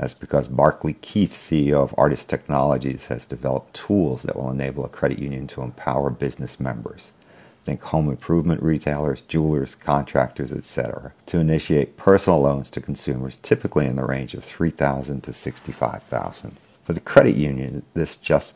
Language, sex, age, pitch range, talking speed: English, male, 50-69, 65-75 Hz, 155 wpm